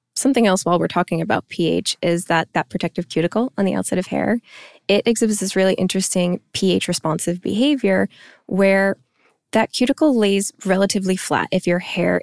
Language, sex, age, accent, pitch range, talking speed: English, female, 20-39, American, 170-200 Hz, 160 wpm